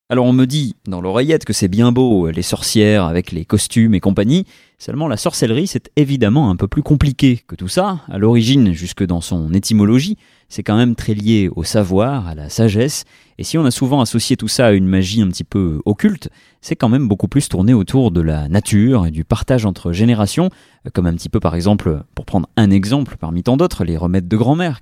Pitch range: 95-130 Hz